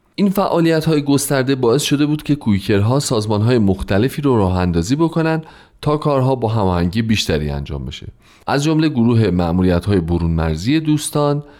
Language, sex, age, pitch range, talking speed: Persian, male, 30-49, 95-140 Hz, 160 wpm